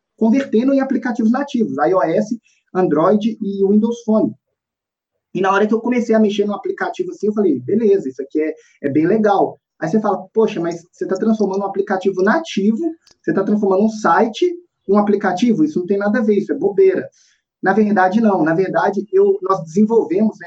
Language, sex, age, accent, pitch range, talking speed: Portuguese, male, 20-39, Brazilian, 185-240 Hz, 190 wpm